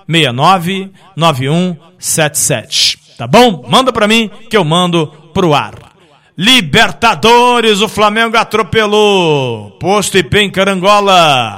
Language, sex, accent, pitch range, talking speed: Portuguese, male, Brazilian, 155-200 Hz, 100 wpm